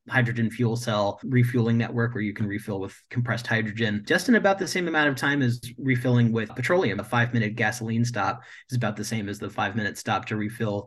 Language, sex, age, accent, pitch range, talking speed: English, male, 30-49, American, 115-135 Hz, 210 wpm